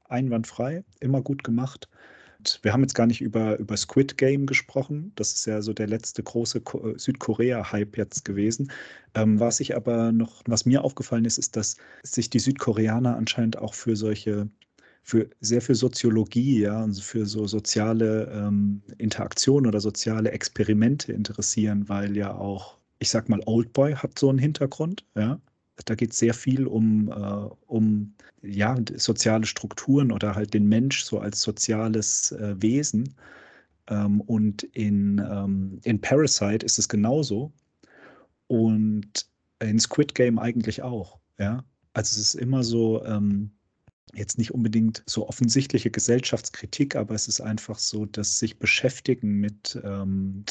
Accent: German